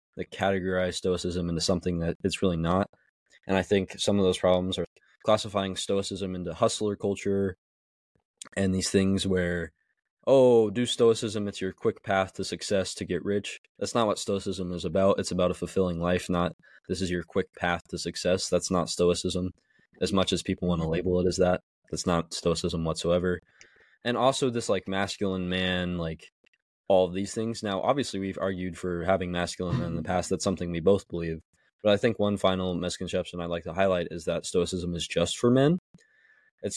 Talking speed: 195 wpm